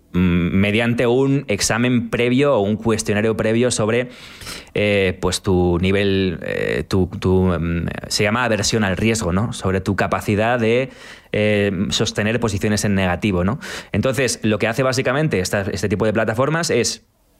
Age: 20-39